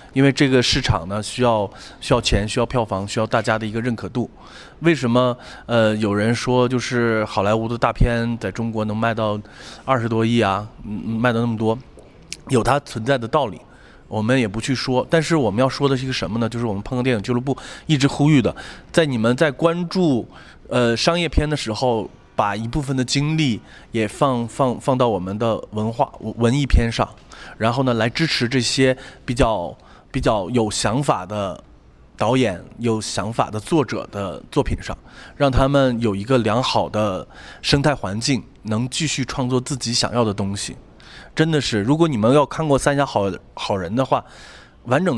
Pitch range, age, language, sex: 110-135 Hz, 20-39, Chinese, male